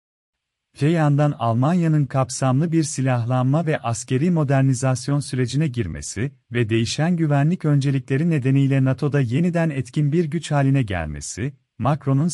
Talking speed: 115 wpm